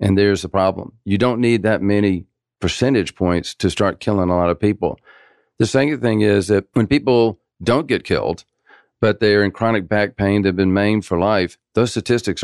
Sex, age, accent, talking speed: male, 50-69, American, 200 wpm